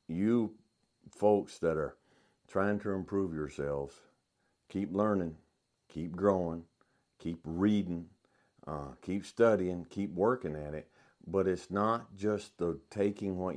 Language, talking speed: English, 125 wpm